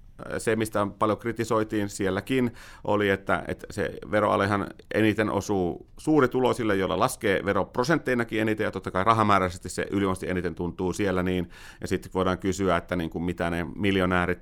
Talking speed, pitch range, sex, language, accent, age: 150 wpm, 90-110 Hz, male, Finnish, native, 30-49